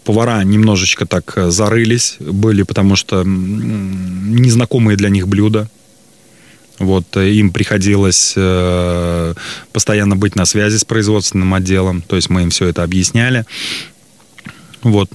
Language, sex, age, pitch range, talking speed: Russian, male, 20-39, 90-110 Hz, 120 wpm